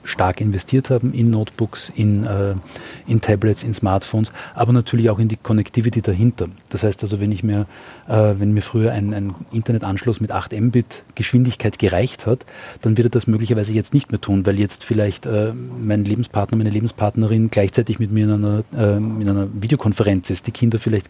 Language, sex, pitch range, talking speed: German, male, 105-120 Hz, 190 wpm